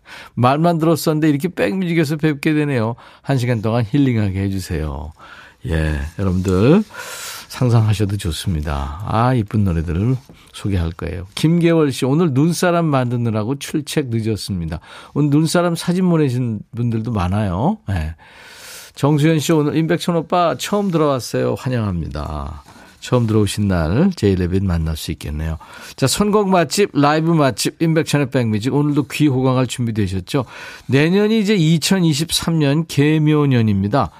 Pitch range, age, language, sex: 105-155 Hz, 50-69, Korean, male